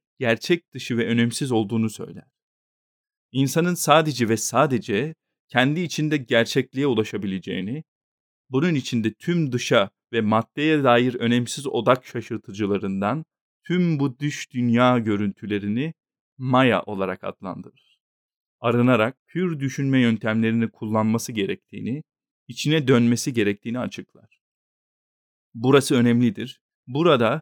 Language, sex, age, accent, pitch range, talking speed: Turkish, male, 40-59, native, 115-140 Hz, 100 wpm